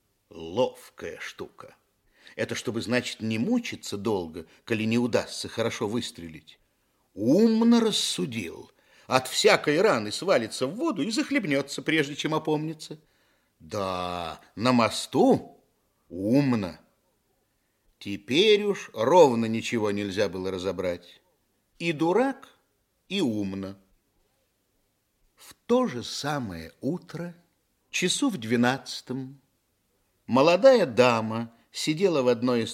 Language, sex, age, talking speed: Russian, male, 50-69, 100 wpm